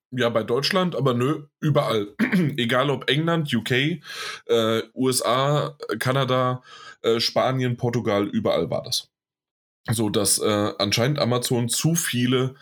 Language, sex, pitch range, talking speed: German, male, 115-145 Hz, 125 wpm